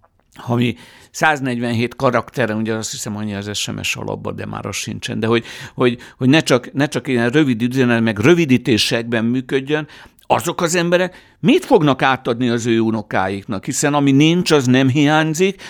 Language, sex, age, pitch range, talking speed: Hungarian, male, 60-79, 115-150 Hz, 165 wpm